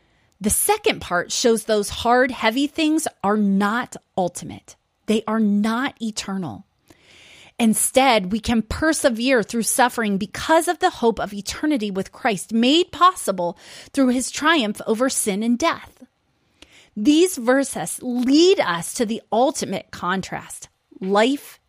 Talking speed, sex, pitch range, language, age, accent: 130 wpm, female, 205-260 Hz, English, 30-49, American